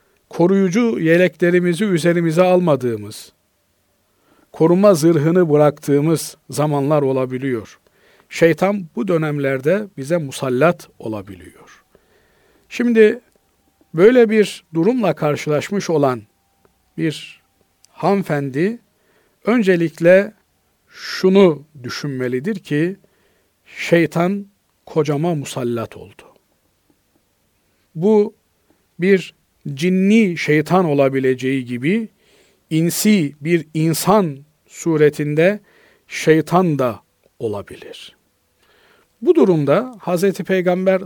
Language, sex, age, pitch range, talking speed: Turkish, male, 50-69, 135-190 Hz, 70 wpm